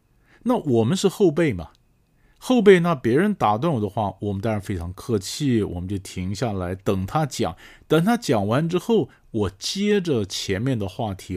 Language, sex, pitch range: Chinese, male, 95-130 Hz